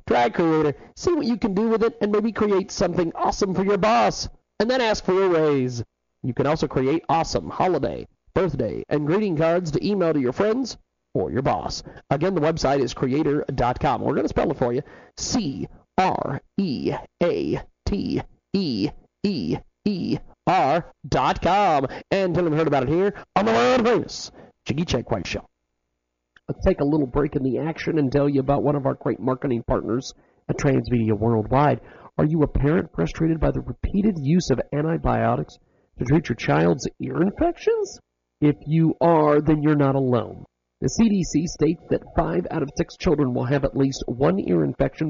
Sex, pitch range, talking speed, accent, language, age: male, 130-175 Hz, 175 wpm, American, English, 40-59